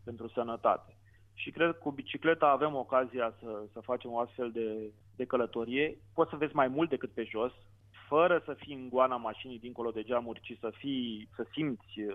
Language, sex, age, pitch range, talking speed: Romanian, male, 30-49, 115-145 Hz, 190 wpm